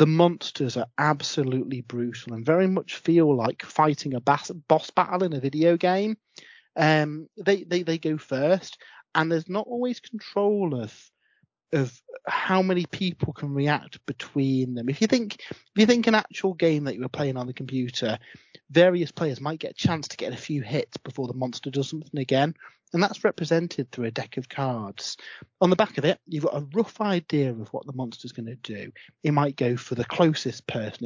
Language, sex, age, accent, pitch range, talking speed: English, male, 30-49, British, 130-175 Hz, 200 wpm